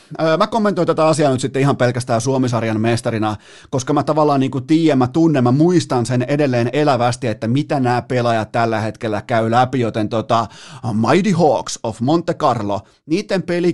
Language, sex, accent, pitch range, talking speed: Finnish, male, native, 120-160 Hz, 170 wpm